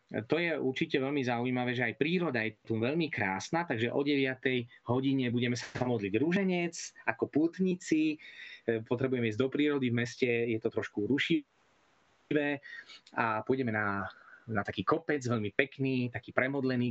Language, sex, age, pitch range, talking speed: Slovak, male, 20-39, 115-140 Hz, 150 wpm